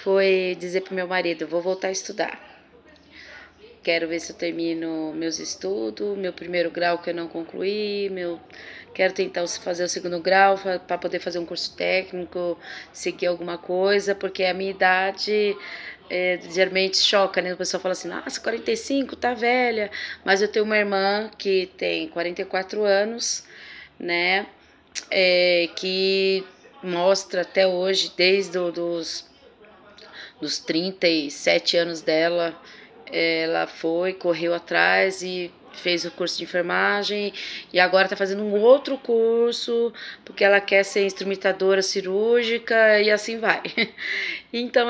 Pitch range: 175-205 Hz